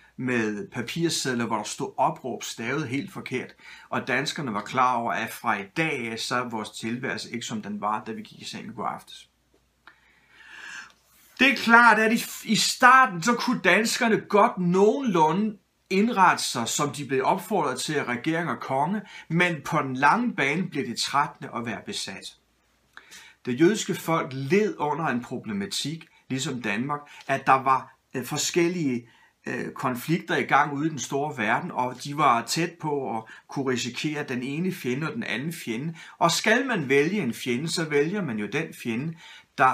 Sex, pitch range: male, 125-195 Hz